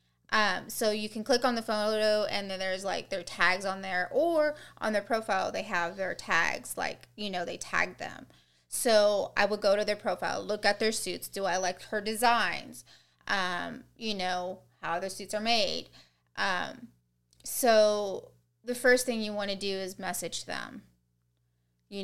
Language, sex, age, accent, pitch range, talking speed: English, female, 20-39, American, 170-215 Hz, 180 wpm